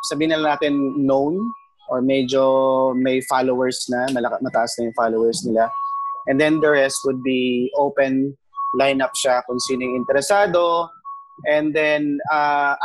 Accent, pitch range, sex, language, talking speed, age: Filipino, 135-160 Hz, male, English, 135 wpm, 20-39